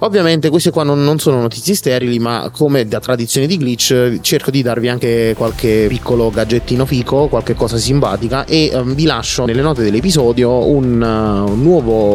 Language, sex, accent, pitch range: Italian, male, native, 110-140 Hz